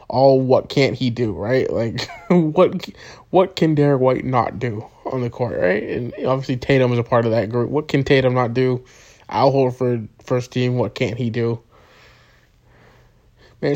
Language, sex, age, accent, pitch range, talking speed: English, male, 20-39, American, 120-150 Hz, 180 wpm